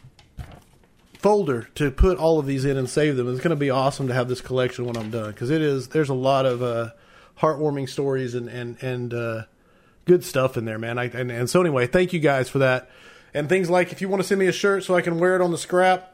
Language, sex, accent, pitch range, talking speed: English, male, American, 130-175 Hz, 255 wpm